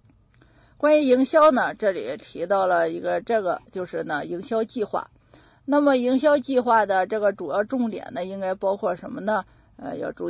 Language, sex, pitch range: Chinese, female, 170-245 Hz